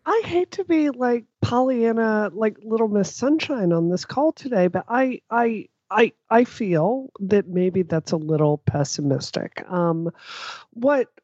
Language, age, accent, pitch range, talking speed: English, 40-59, American, 160-225 Hz, 150 wpm